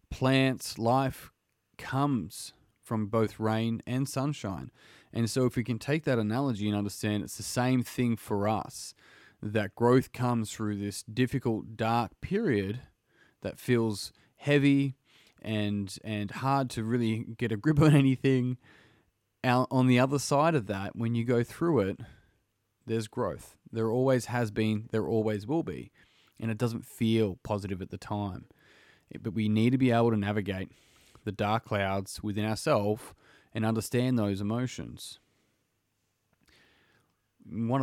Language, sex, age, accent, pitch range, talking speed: English, male, 20-39, Australian, 105-125 Hz, 150 wpm